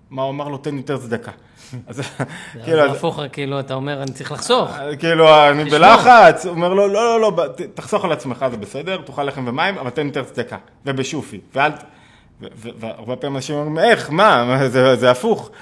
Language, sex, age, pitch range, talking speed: Hebrew, male, 20-39, 120-150 Hz, 185 wpm